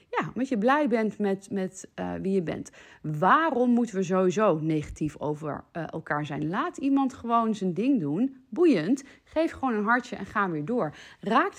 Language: Dutch